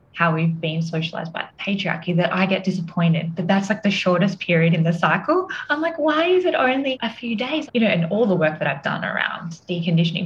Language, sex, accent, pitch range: English, female, Australian, 165-200 Hz